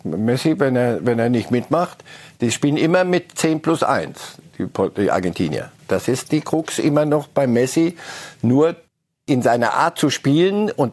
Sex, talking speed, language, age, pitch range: male, 175 wpm, German, 60-79, 135-170 Hz